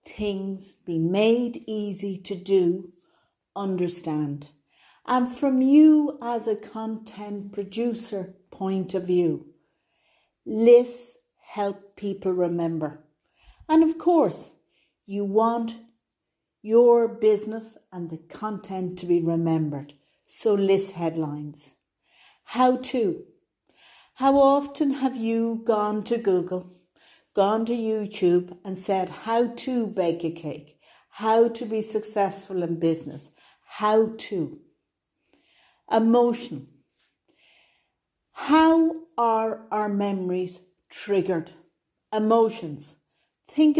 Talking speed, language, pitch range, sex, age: 100 wpm, English, 180-235 Hz, female, 60-79